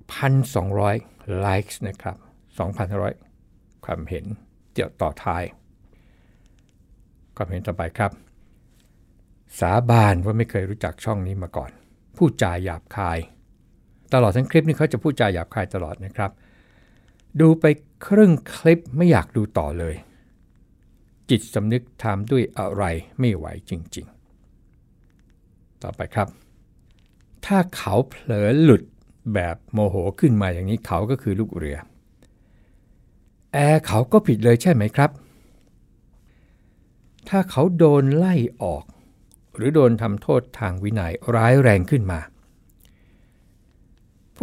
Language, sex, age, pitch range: Thai, male, 60-79, 95-125 Hz